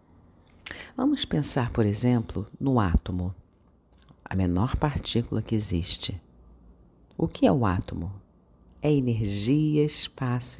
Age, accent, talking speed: 50-69, Brazilian, 110 wpm